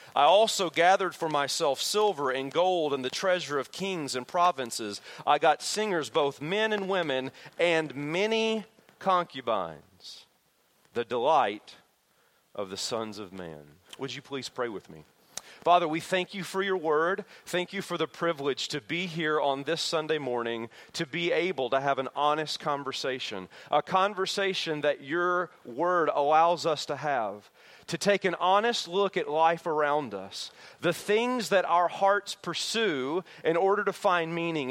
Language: English